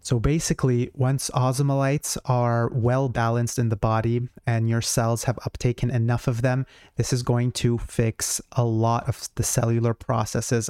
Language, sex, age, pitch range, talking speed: English, male, 30-49, 115-130 Hz, 165 wpm